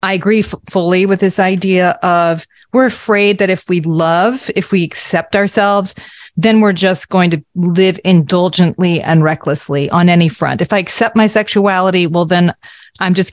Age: 30-49